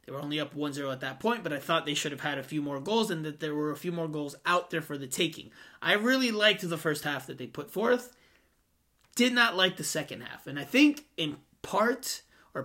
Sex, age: male, 30-49